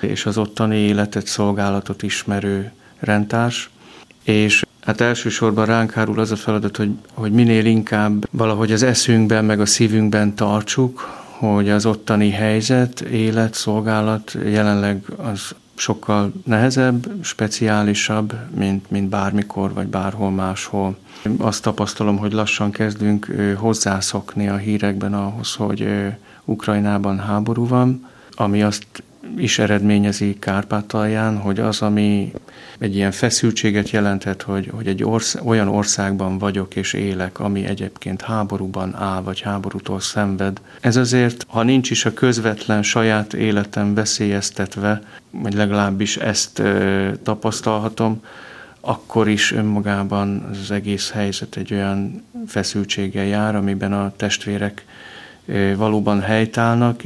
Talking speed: 120 wpm